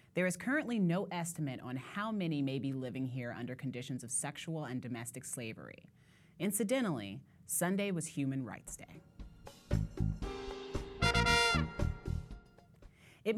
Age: 30-49